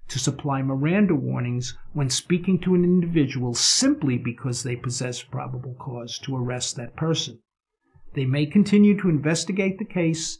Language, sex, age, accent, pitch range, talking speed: English, male, 50-69, American, 130-165 Hz, 150 wpm